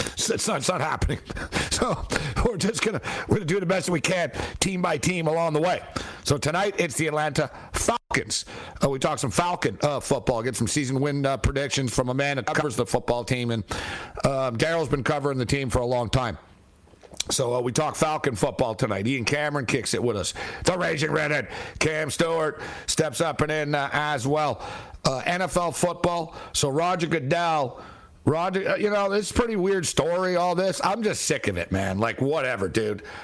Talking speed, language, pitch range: 200 wpm, English, 130-170 Hz